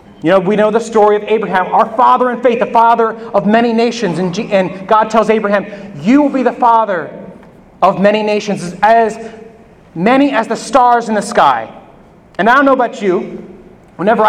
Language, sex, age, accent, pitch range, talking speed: English, male, 30-49, American, 205-240 Hz, 195 wpm